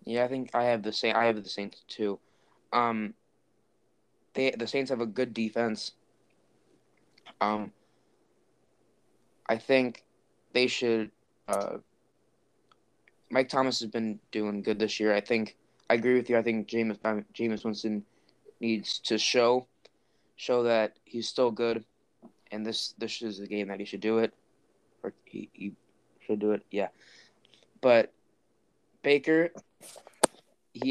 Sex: male